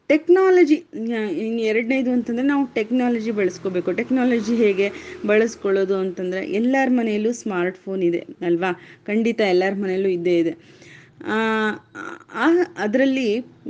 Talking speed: 95 wpm